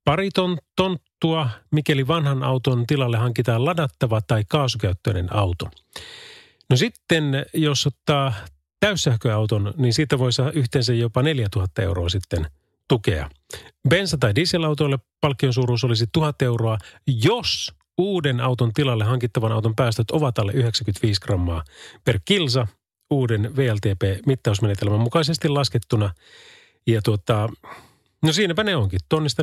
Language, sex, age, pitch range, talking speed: Finnish, male, 30-49, 110-145 Hz, 115 wpm